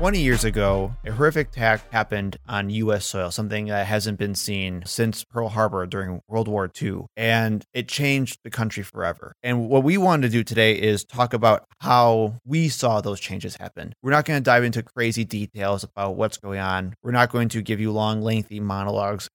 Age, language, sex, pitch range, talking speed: 20-39, English, male, 100-120 Hz, 200 wpm